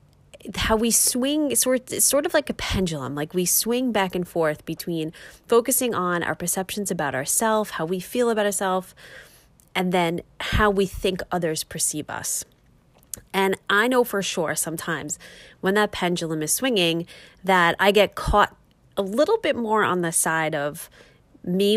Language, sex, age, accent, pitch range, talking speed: English, female, 30-49, American, 165-205 Hz, 165 wpm